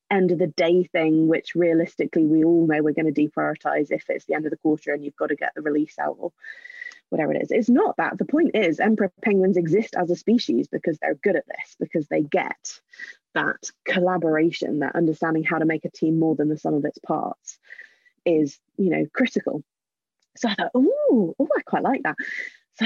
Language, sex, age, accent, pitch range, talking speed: English, female, 20-39, British, 155-220 Hz, 220 wpm